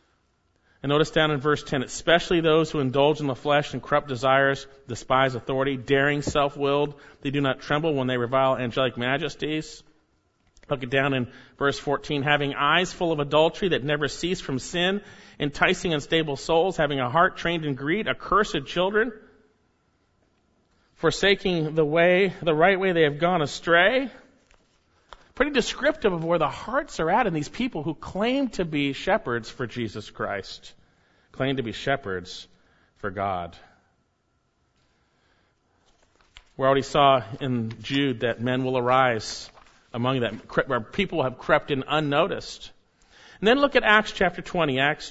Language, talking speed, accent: English, 155 wpm, American